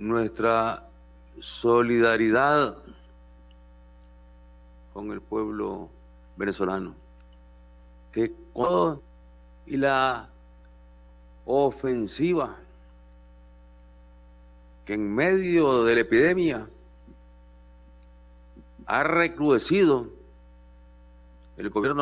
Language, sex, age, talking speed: Spanish, male, 50-69, 55 wpm